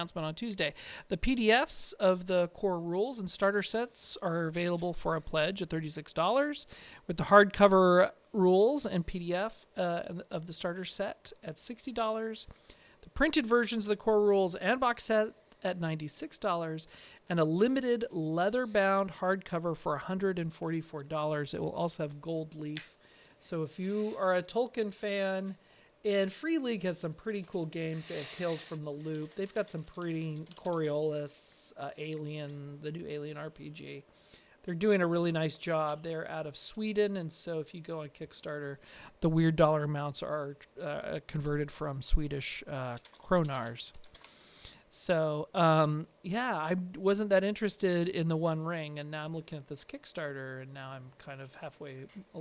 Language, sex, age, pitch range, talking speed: English, male, 40-59, 155-195 Hz, 165 wpm